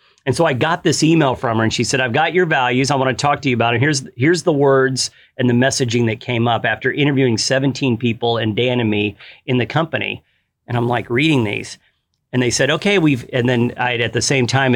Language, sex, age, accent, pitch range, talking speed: English, male, 40-59, American, 120-155 Hz, 250 wpm